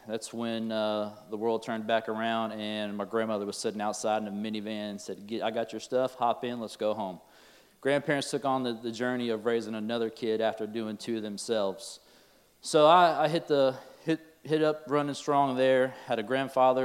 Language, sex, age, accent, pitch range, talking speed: English, male, 30-49, American, 110-130 Hz, 195 wpm